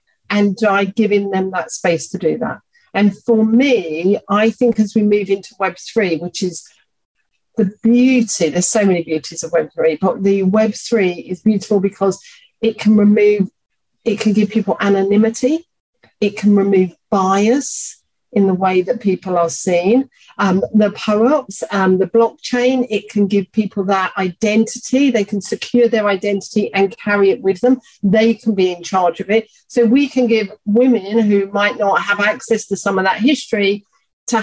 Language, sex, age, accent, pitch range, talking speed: English, female, 40-59, British, 195-235 Hz, 170 wpm